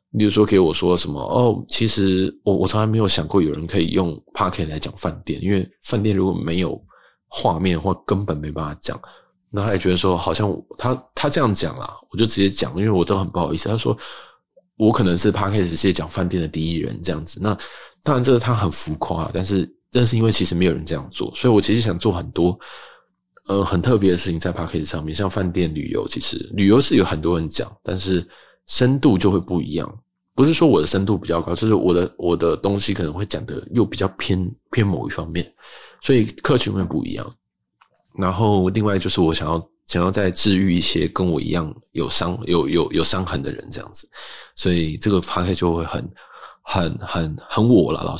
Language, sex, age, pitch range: Chinese, male, 20-39, 85-100 Hz